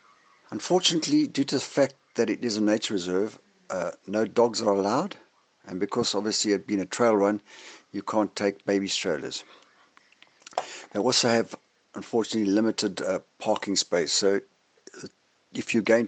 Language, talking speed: English, 155 wpm